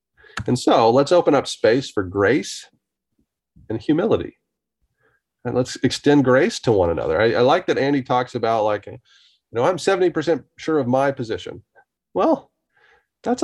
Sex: male